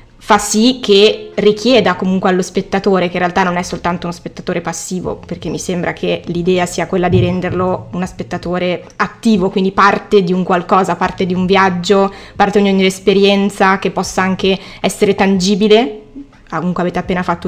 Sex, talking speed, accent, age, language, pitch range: female, 170 wpm, native, 20-39, Italian, 180-205 Hz